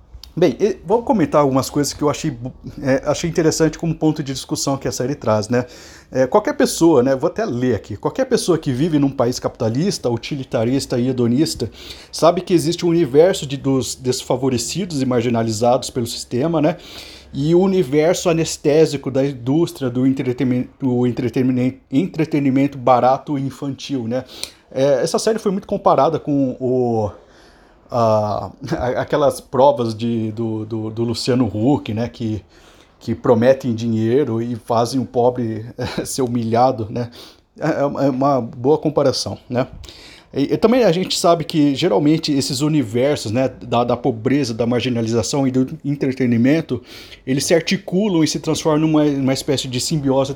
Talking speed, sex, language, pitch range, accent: 155 wpm, male, Portuguese, 120-150 Hz, Brazilian